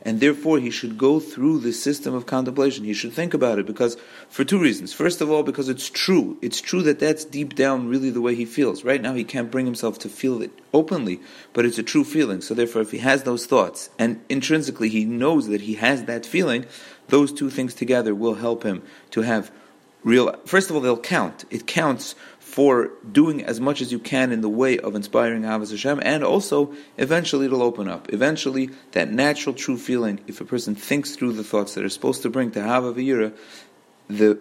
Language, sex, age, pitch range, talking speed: English, male, 40-59, 115-140 Hz, 215 wpm